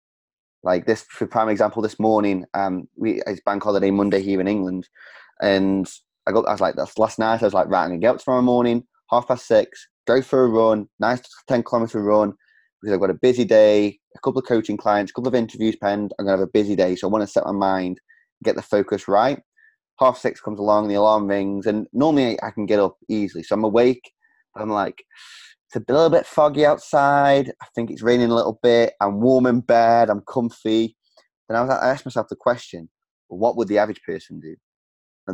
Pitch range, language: 95-120 Hz, English